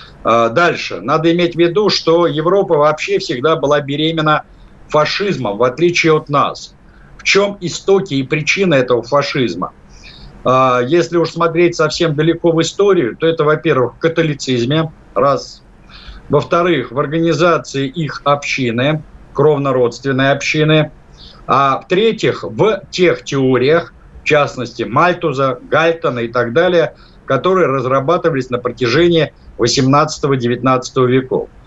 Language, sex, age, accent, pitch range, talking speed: Russian, male, 50-69, native, 135-165 Hz, 115 wpm